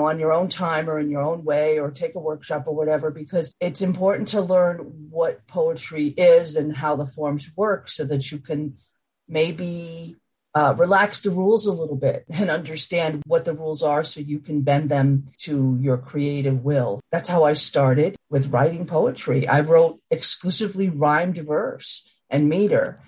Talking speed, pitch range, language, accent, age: 180 wpm, 145-180 Hz, English, American, 50-69